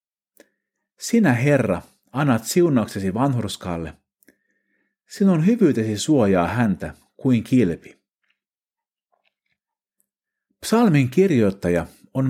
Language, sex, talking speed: Finnish, male, 70 wpm